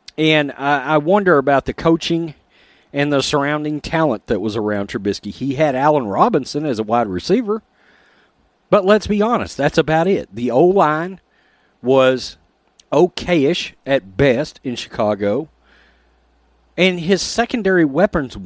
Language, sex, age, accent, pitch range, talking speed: English, male, 40-59, American, 125-185 Hz, 135 wpm